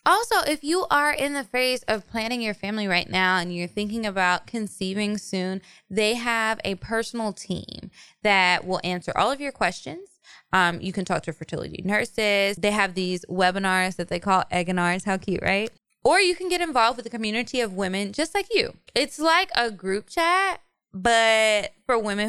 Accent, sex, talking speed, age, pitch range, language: American, female, 190 wpm, 20-39, 180-230 Hz, English